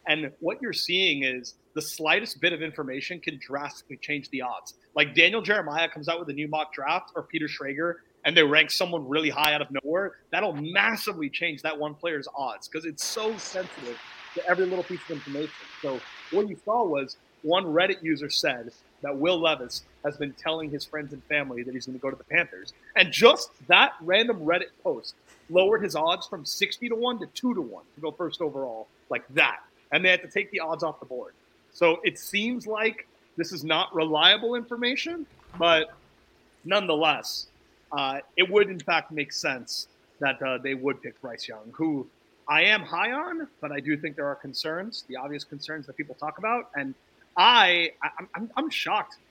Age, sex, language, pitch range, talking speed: 30-49, male, English, 145-185 Hz, 195 wpm